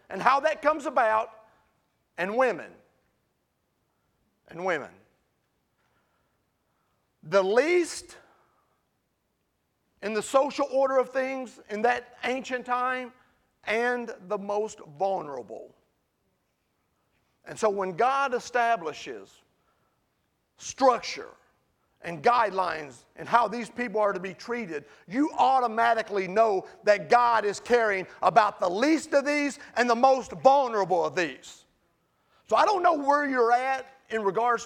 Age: 40-59